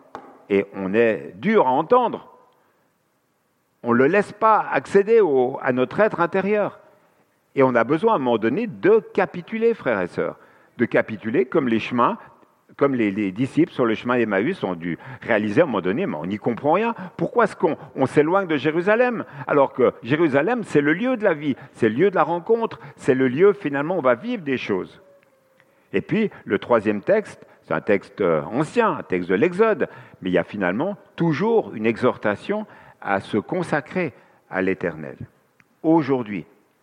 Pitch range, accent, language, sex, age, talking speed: 120-185 Hz, French, French, male, 50-69, 180 wpm